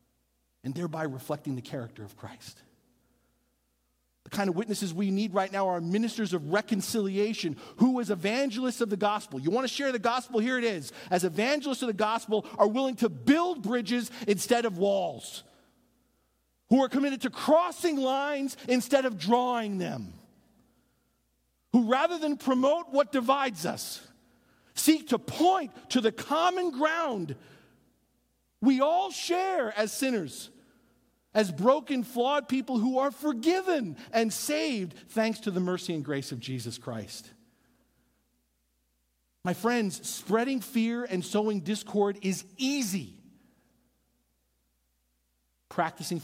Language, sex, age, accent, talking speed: English, male, 50-69, American, 135 wpm